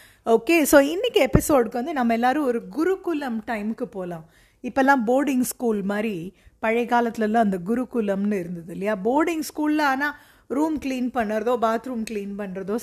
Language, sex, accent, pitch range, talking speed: Tamil, female, native, 205-270 Hz, 140 wpm